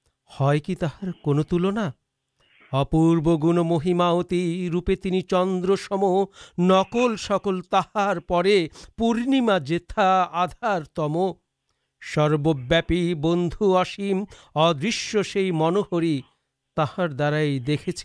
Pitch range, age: 165-215 Hz, 50-69